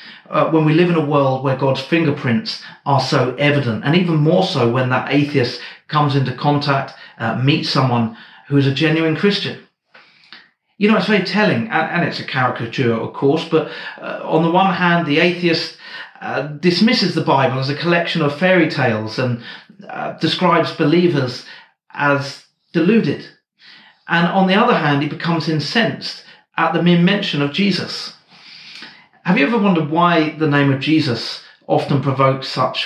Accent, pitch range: British, 145-180 Hz